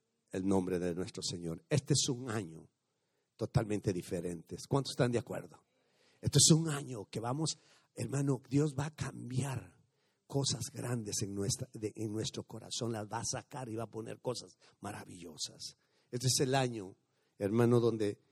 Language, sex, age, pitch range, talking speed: English, male, 50-69, 105-130 Hz, 165 wpm